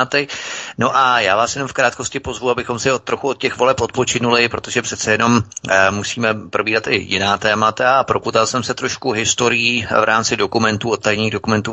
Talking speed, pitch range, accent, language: 190 wpm, 105-120 Hz, native, Czech